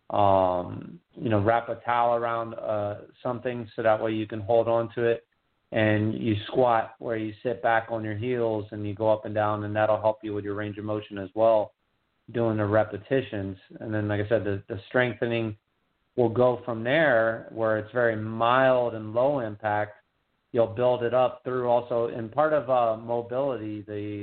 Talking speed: 195 wpm